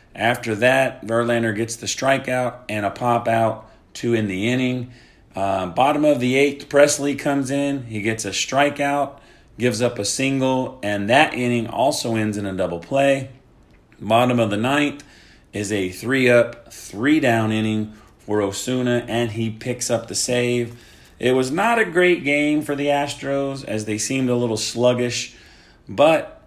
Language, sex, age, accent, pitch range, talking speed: English, male, 40-59, American, 110-135 Hz, 160 wpm